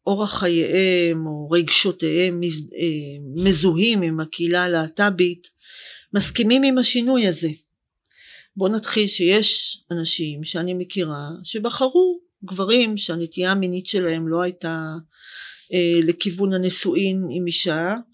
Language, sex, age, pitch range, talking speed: Hebrew, female, 40-59, 170-220 Hz, 100 wpm